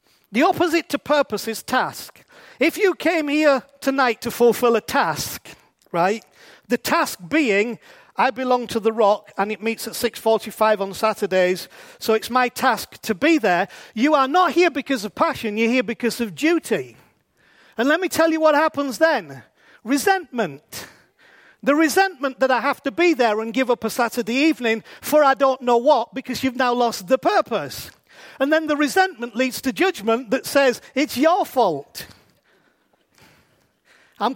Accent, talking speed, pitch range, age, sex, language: British, 170 wpm, 235-305 Hz, 40-59, male, English